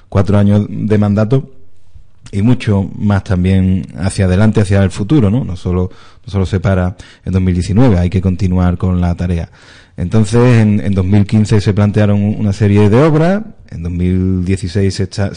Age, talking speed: 30-49, 155 wpm